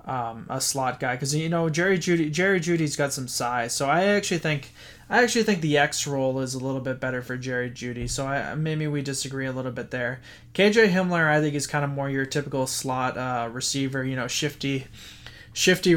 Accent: American